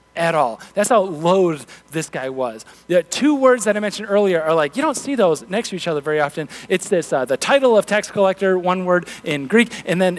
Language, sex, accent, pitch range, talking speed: English, male, American, 140-195 Hz, 240 wpm